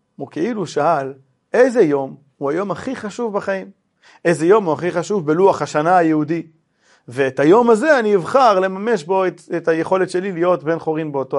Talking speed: 175 wpm